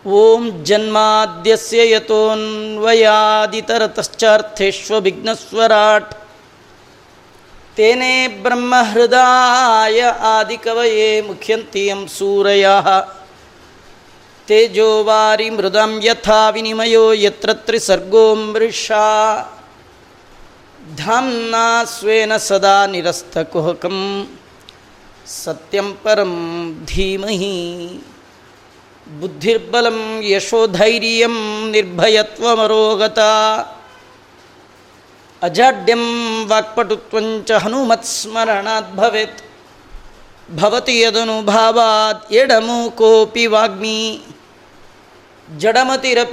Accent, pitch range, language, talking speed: native, 215-230 Hz, Kannada, 35 wpm